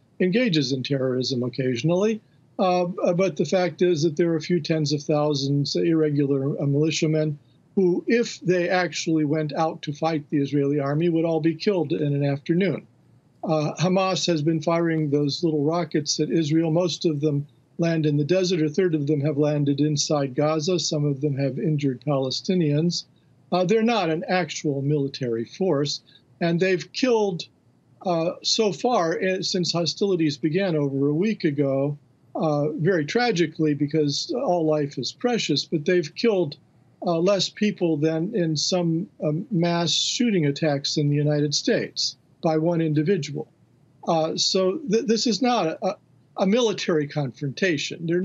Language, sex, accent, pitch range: English, male, American, 145-180 Hz